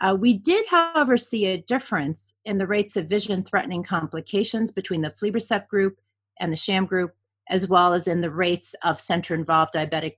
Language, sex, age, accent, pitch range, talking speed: English, female, 40-59, American, 160-205 Hz, 175 wpm